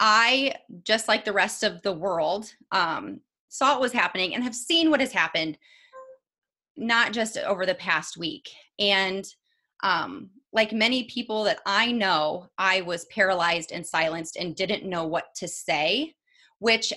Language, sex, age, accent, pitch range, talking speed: English, female, 30-49, American, 185-235 Hz, 160 wpm